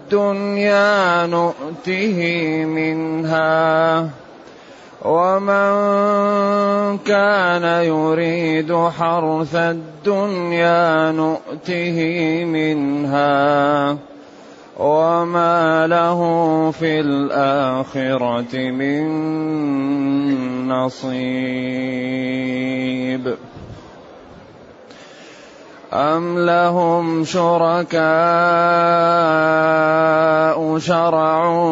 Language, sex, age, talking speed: Arabic, male, 30-49, 40 wpm